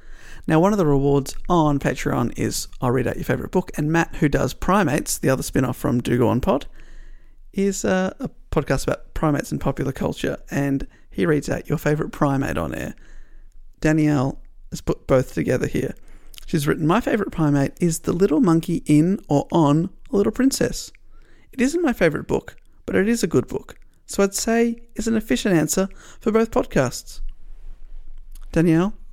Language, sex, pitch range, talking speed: English, male, 145-195 Hz, 180 wpm